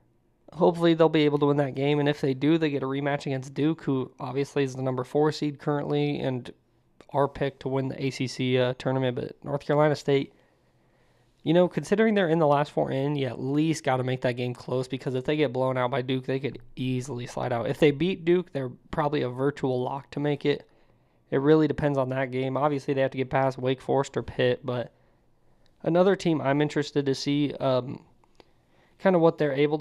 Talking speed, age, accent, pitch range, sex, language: 225 wpm, 20-39, American, 130-150 Hz, male, English